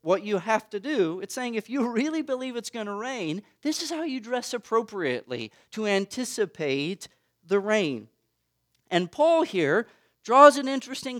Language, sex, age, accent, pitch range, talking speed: English, male, 40-59, American, 165-225 Hz, 165 wpm